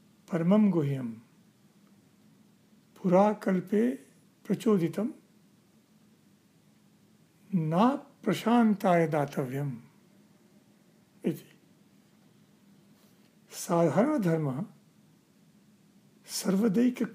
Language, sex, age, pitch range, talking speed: English, male, 60-79, 180-210 Hz, 40 wpm